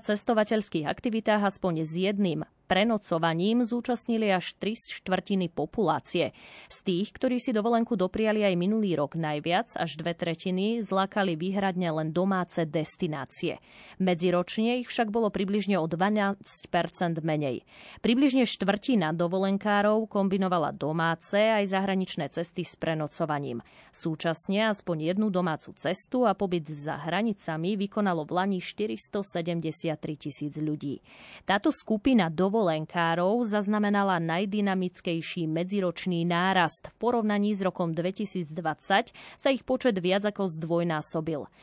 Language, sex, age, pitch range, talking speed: Slovak, female, 30-49, 165-210 Hz, 115 wpm